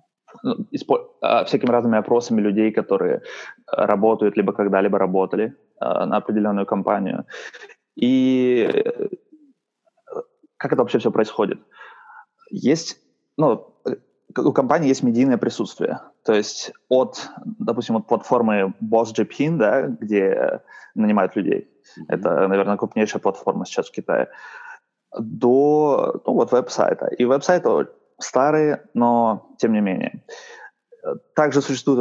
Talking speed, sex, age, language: 105 wpm, male, 20-39, Russian